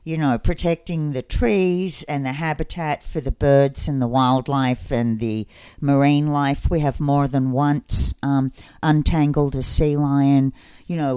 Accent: Australian